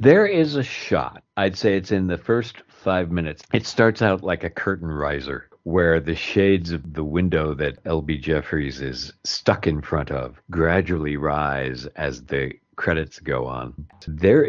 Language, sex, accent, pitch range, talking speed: English, male, American, 75-95 Hz, 170 wpm